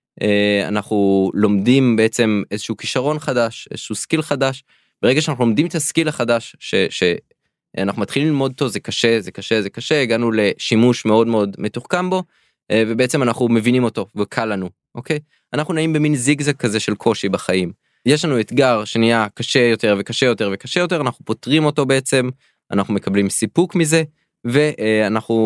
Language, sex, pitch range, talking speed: Hebrew, male, 105-145 Hz, 155 wpm